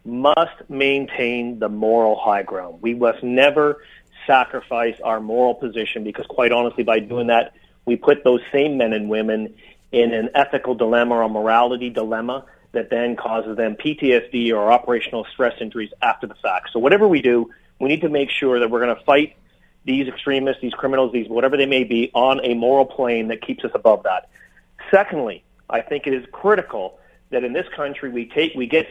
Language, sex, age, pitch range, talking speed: English, male, 40-59, 120-145 Hz, 190 wpm